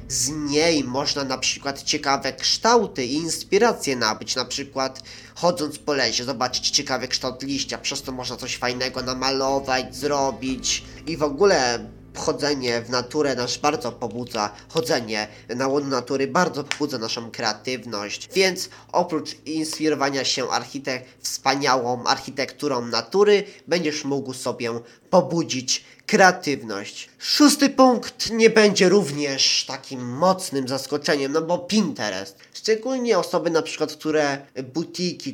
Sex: male